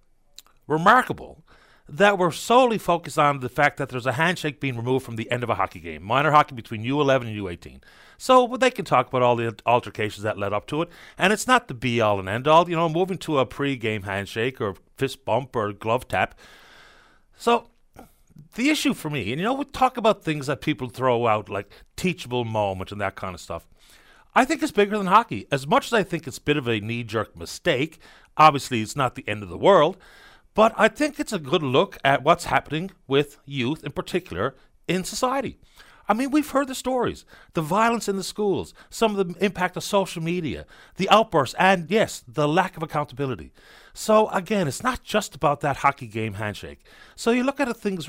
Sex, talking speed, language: male, 210 wpm, English